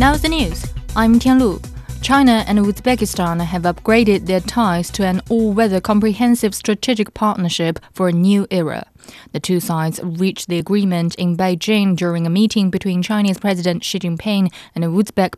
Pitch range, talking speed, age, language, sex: 175-210 Hz, 155 wpm, 20-39, English, female